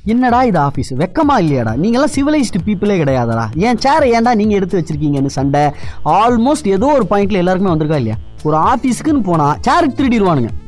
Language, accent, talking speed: Tamil, native, 155 wpm